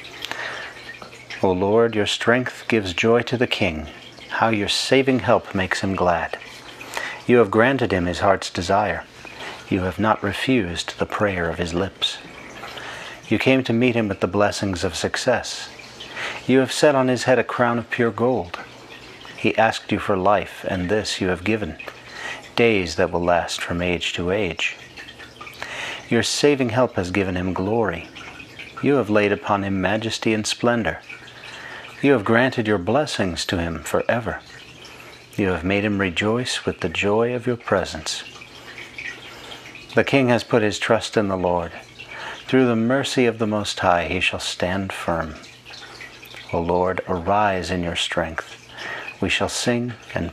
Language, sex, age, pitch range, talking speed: English, male, 40-59, 90-115 Hz, 160 wpm